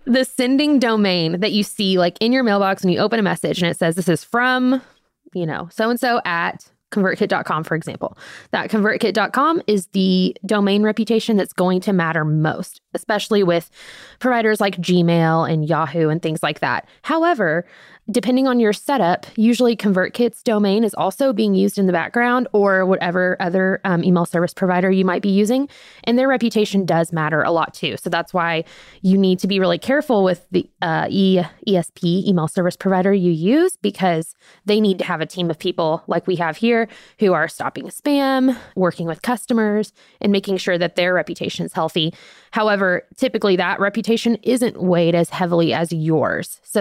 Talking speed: 180 wpm